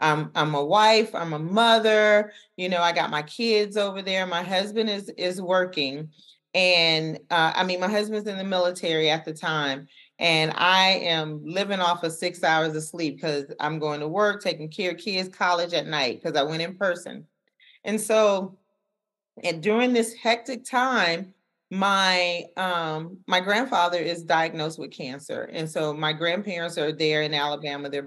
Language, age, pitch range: English, 30-49, 155-190 Hz